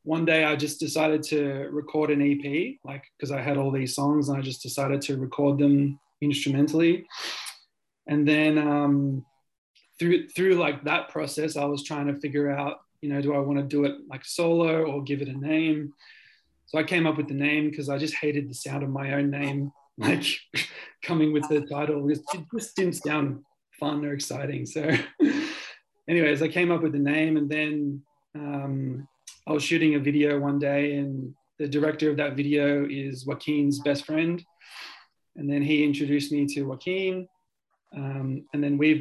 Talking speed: 185 wpm